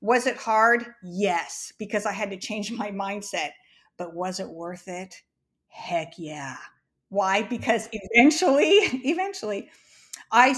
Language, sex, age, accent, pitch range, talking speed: English, female, 50-69, American, 190-240 Hz, 130 wpm